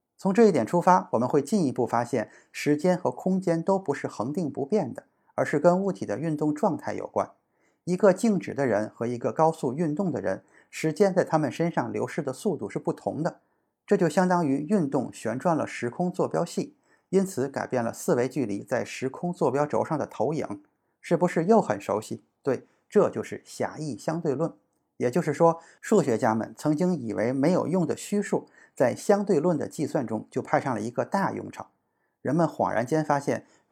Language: Chinese